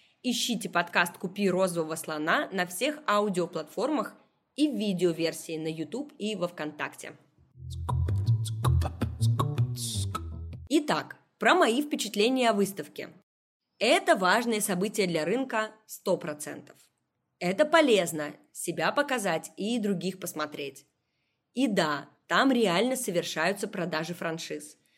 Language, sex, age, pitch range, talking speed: Russian, female, 20-39, 165-235 Hz, 100 wpm